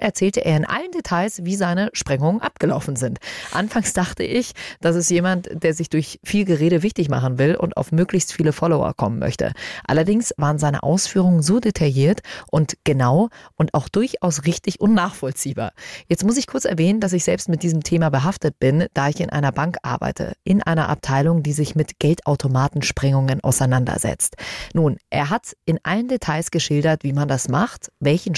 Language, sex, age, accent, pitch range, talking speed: German, female, 30-49, German, 145-190 Hz, 175 wpm